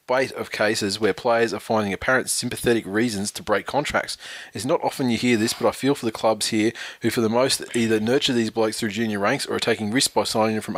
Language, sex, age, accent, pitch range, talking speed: English, male, 20-39, Australian, 110-125 Hz, 250 wpm